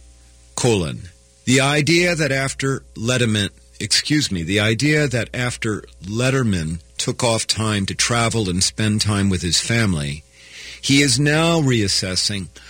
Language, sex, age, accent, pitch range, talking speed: English, male, 50-69, American, 90-120 Hz, 130 wpm